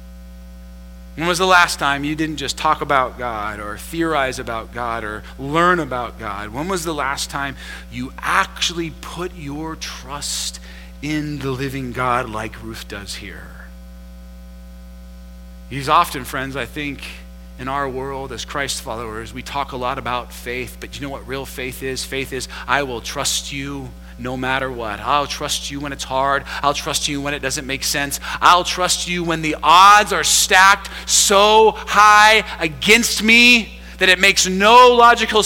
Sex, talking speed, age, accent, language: male, 170 wpm, 30-49, American, English